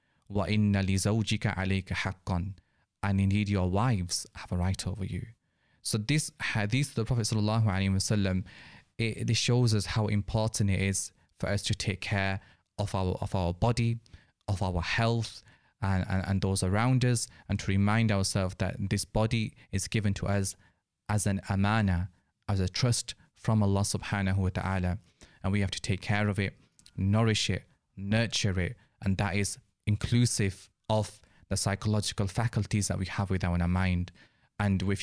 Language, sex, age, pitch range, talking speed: English, male, 20-39, 95-110 Hz, 155 wpm